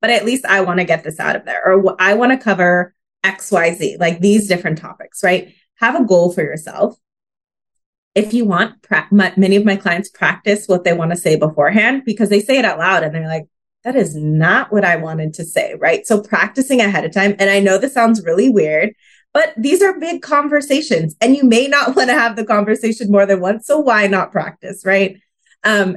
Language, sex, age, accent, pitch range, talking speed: English, female, 20-39, American, 185-235 Hz, 215 wpm